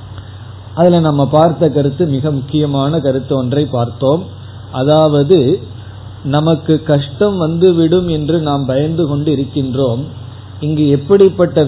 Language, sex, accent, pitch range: Tamil, male, native, 125-165 Hz